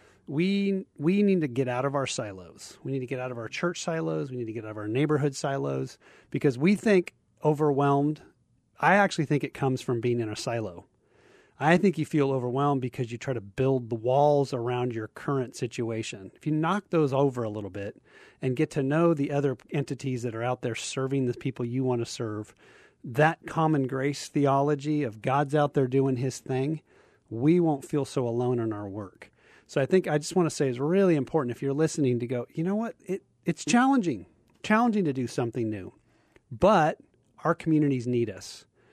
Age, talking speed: 30-49, 205 wpm